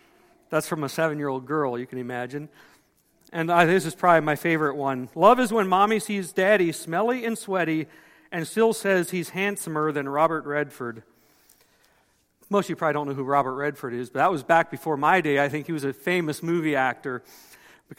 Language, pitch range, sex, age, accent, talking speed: English, 155-205 Hz, male, 50-69, American, 195 wpm